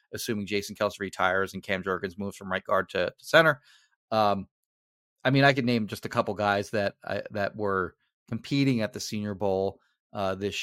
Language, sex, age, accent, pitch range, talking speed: English, male, 30-49, American, 100-130 Hz, 200 wpm